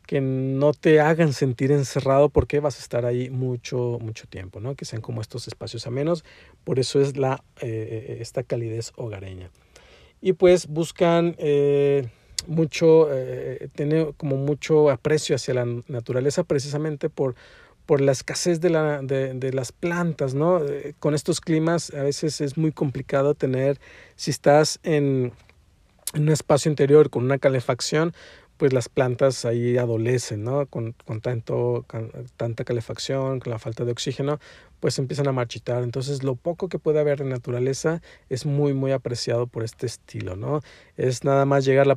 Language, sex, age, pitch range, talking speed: Spanish, male, 50-69, 120-150 Hz, 165 wpm